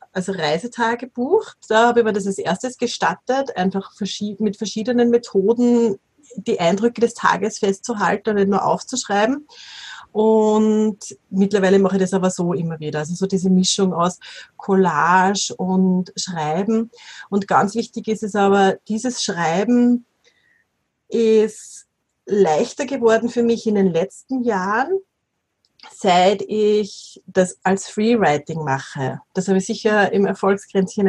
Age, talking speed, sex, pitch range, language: 30-49, 135 wpm, female, 190-230 Hz, German